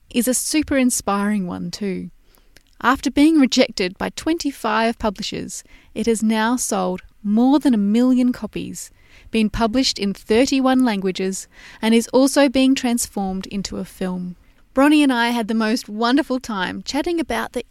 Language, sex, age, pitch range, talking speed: English, female, 20-39, 200-255 Hz, 150 wpm